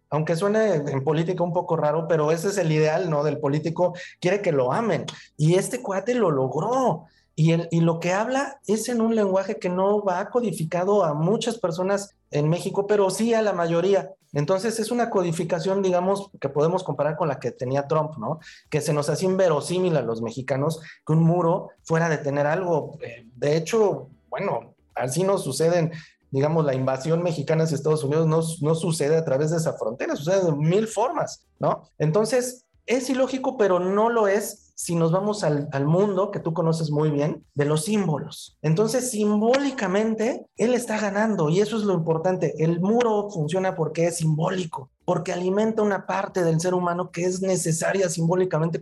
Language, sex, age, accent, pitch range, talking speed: Spanish, male, 30-49, Mexican, 155-200 Hz, 185 wpm